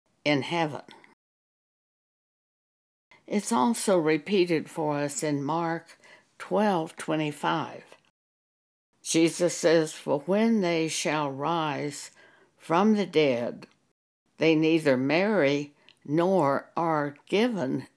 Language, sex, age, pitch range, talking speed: English, female, 60-79, 145-185 Hz, 85 wpm